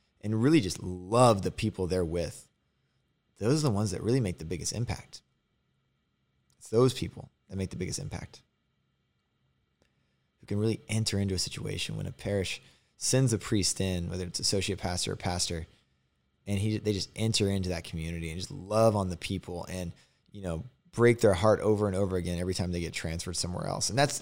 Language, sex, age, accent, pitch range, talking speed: English, male, 20-39, American, 90-110 Hz, 195 wpm